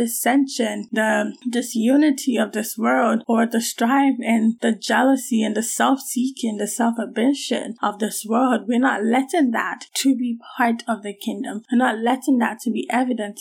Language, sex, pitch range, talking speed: English, female, 225-255 Hz, 160 wpm